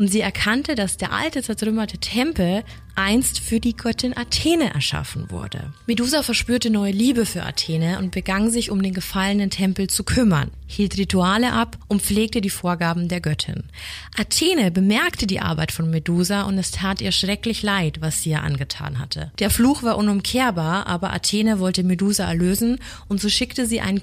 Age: 30-49